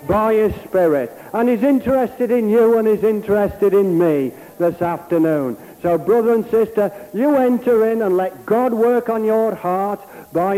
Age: 60-79